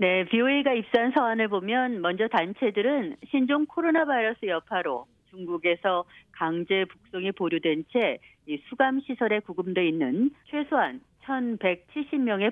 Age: 40-59